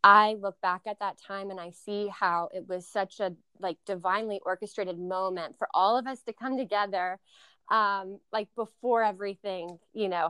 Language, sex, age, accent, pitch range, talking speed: English, female, 20-39, American, 185-215 Hz, 180 wpm